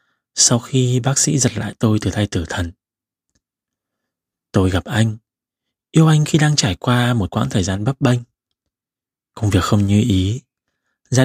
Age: 20-39